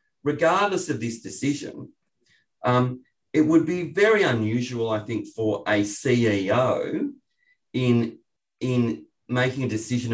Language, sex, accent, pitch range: English, male, Australian, 105-130 Hz